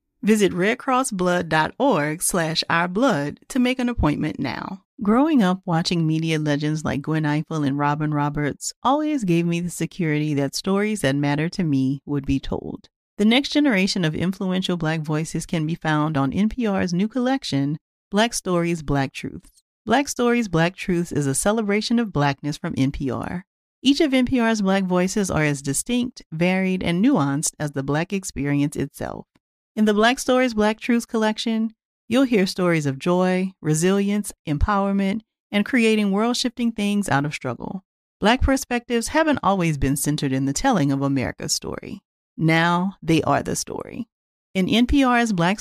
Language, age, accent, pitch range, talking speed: English, 40-59, American, 155-225 Hz, 160 wpm